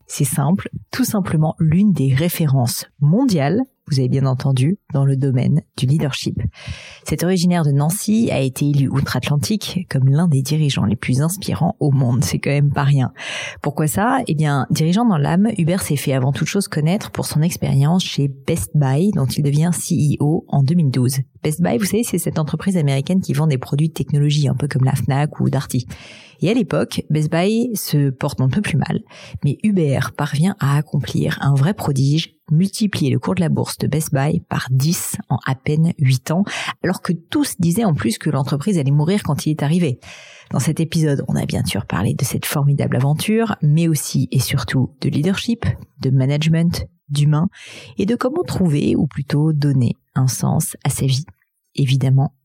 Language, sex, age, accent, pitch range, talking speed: French, female, 30-49, French, 135-175 Hz, 195 wpm